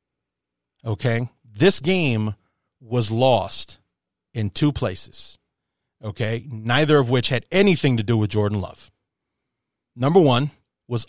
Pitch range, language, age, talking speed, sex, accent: 115-145 Hz, English, 40-59, 120 wpm, male, American